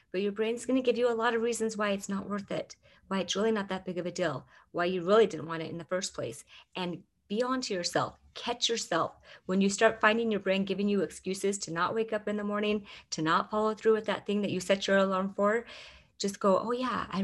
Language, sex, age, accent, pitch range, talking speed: English, female, 30-49, American, 175-210 Hz, 265 wpm